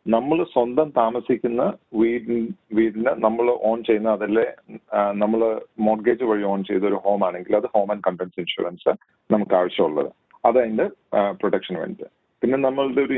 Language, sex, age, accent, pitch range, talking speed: Malayalam, male, 40-59, native, 100-125 Hz, 130 wpm